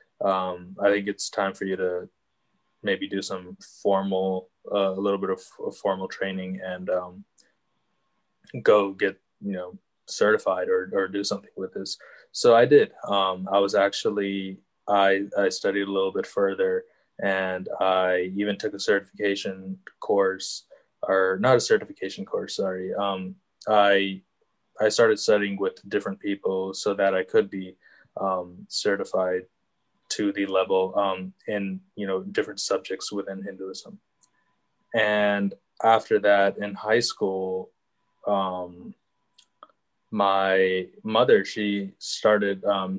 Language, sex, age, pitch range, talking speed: English, male, 20-39, 95-105 Hz, 135 wpm